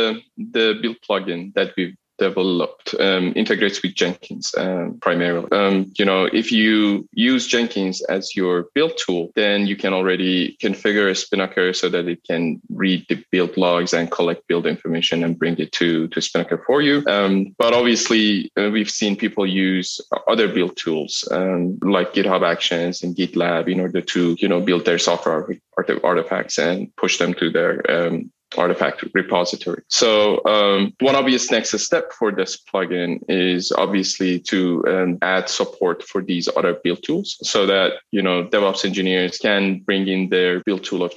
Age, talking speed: 20-39, 170 wpm